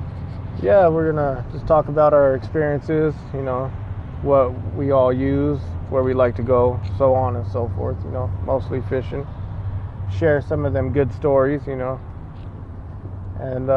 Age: 20-39